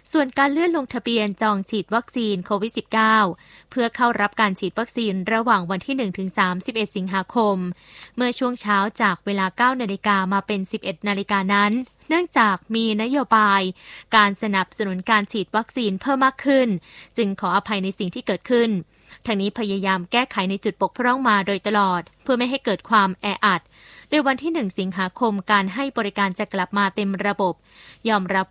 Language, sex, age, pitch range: Thai, female, 20-39, 195-235 Hz